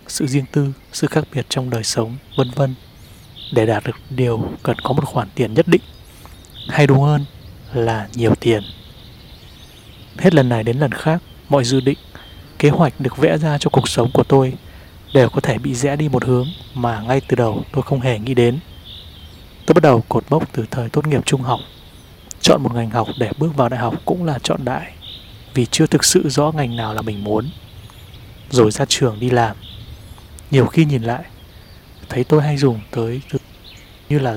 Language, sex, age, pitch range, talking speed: Vietnamese, male, 20-39, 110-140 Hz, 200 wpm